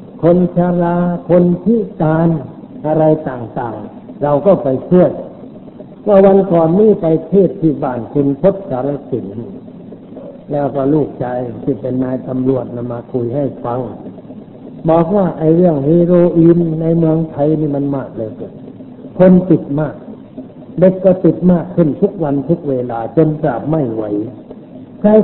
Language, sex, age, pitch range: Thai, male, 60-79, 135-180 Hz